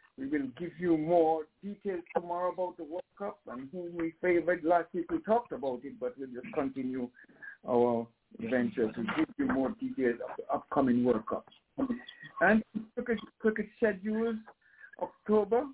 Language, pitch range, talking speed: English, 165-220 Hz, 160 wpm